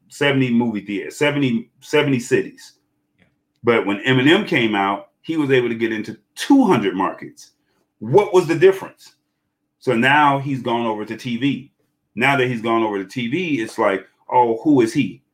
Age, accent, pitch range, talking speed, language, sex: 30-49, American, 115-145 Hz, 170 wpm, English, male